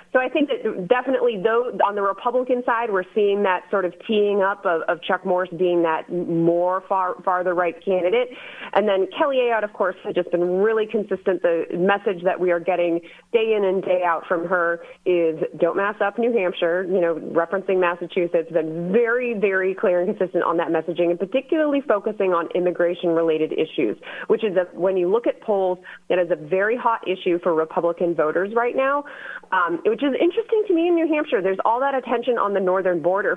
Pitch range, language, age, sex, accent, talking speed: 175-230 Hz, English, 30-49, female, American, 205 wpm